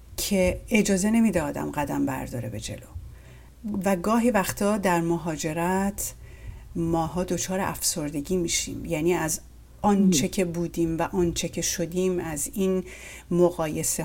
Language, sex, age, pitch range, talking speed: English, female, 40-59, 165-190 Hz, 125 wpm